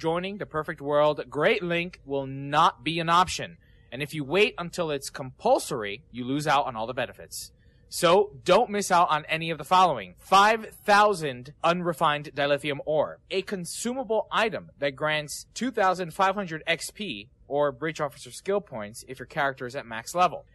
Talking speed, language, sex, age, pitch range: 165 wpm, English, male, 20-39, 140-180 Hz